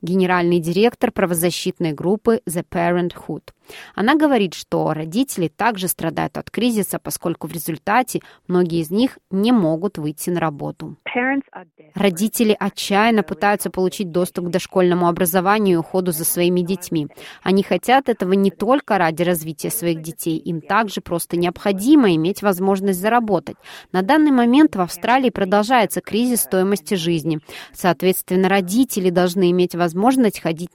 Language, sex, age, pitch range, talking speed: Russian, female, 20-39, 170-210 Hz, 135 wpm